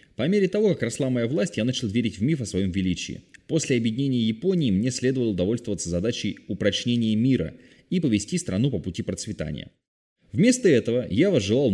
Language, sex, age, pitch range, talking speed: Russian, male, 20-39, 90-130 Hz, 175 wpm